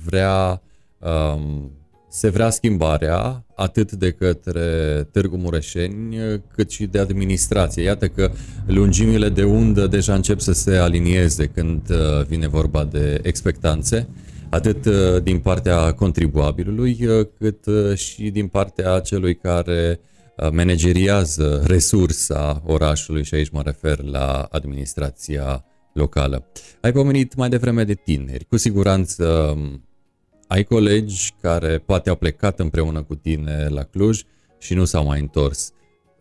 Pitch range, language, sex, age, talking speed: 80-105 Hz, Romanian, male, 30-49, 120 wpm